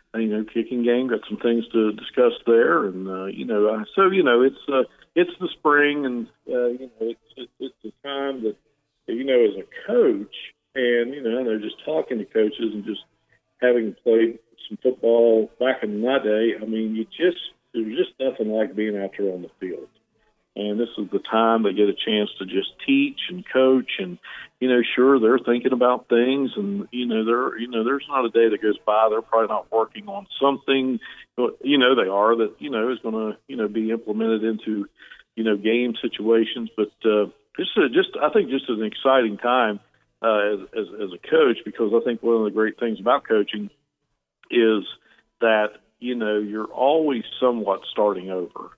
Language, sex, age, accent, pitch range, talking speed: English, male, 50-69, American, 110-130 Hz, 205 wpm